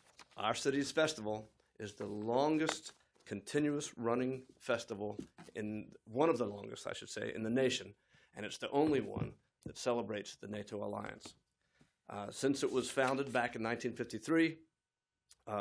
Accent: American